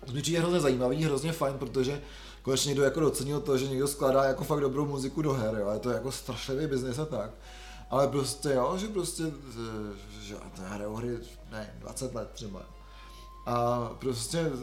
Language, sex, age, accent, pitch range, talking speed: Czech, male, 20-39, native, 135-165 Hz, 185 wpm